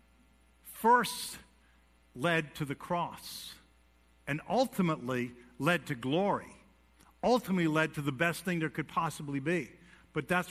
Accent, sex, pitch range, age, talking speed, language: American, male, 145-200 Hz, 50-69, 125 wpm, English